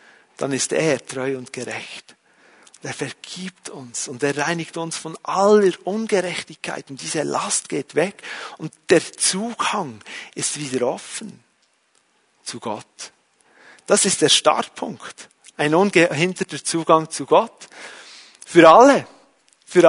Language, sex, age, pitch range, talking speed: German, male, 40-59, 160-215 Hz, 125 wpm